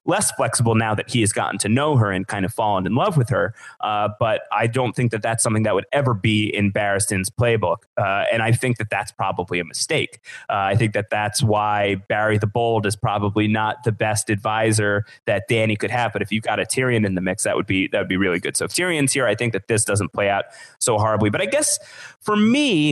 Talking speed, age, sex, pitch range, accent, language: 245 wpm, 30-49, male, 105-130 Hz, American, English